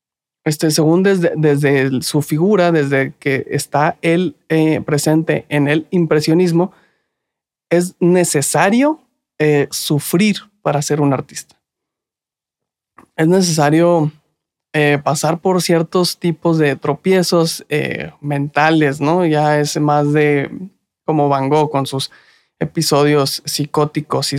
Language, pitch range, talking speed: Spanish, 145-170 Hz, 115 wpm